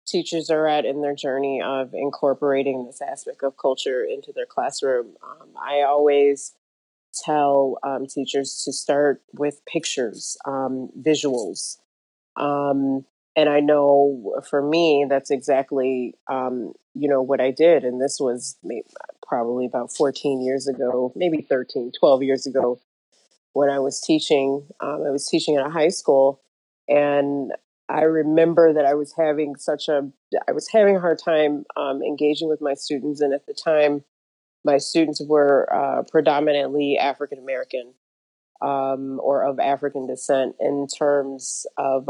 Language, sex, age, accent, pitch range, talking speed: English, female, 30-49, American, 135-155 Hz, 150 wpm